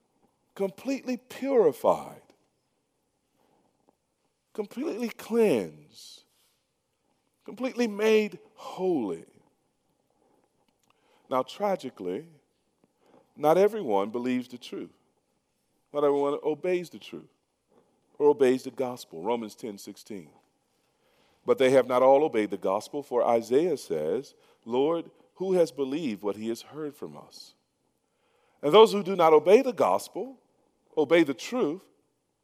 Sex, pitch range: male, 120-195 Hz